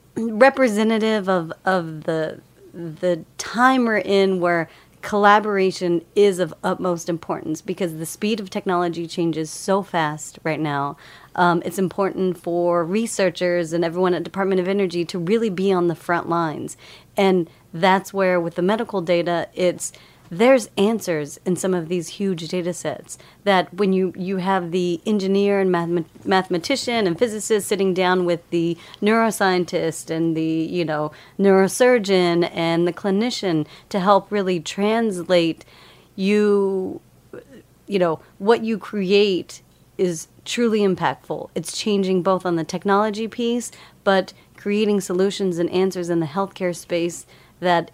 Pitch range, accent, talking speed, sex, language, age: 170-200 Hz, American, 140 wpm, female, English, 40-59